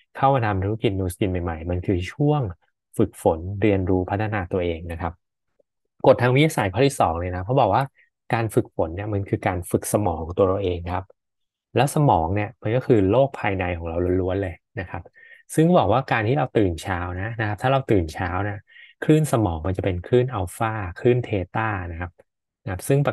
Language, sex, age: Thai, male, 20-39